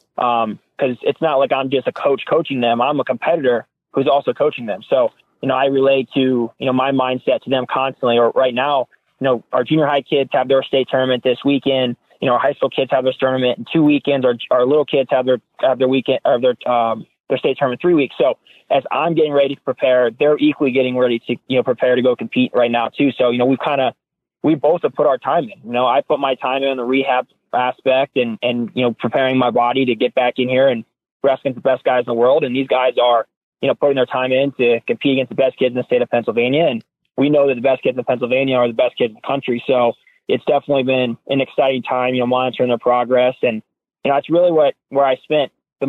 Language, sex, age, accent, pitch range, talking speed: English, male, 20-39, American, 125-140 Hz, 260 wpm